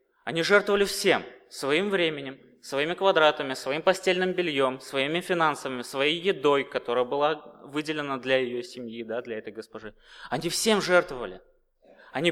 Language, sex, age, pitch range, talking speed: Russian, male, 20-39, 135-195 Hz, 130 wpm